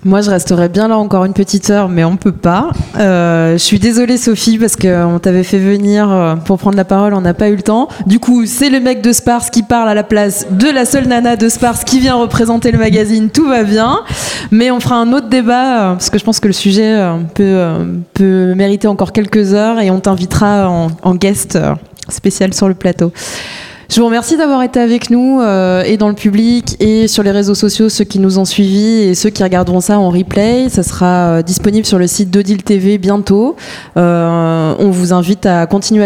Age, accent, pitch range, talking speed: 20-39, French, 180-220 Hz, 225 wpm